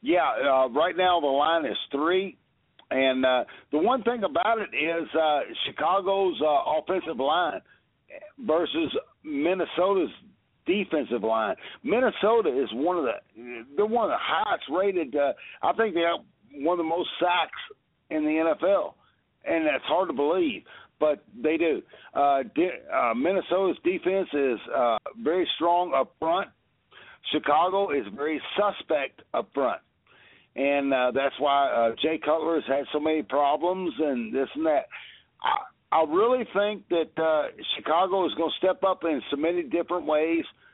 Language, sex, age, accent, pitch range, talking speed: English, male, 60-79, American, 145-195 Hz, 160 wpm